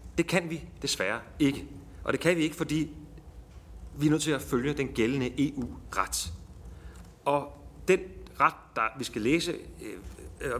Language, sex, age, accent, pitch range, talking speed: Danish, male, 40-59, native, 100-145 Hz, 160 wpm